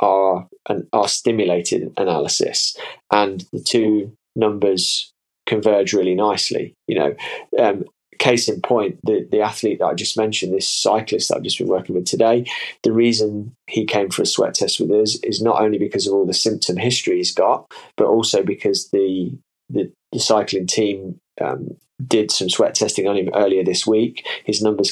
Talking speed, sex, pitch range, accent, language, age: 180 wpm, male, 100-120 Hz, British, English, 20-39